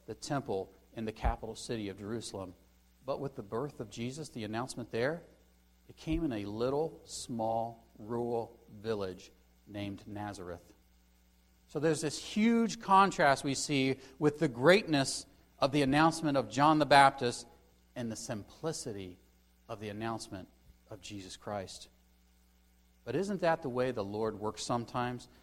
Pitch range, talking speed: 110-155 Hz, 145 wpm